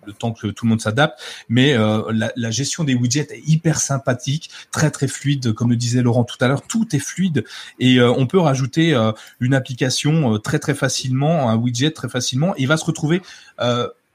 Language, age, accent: French, 30-49, French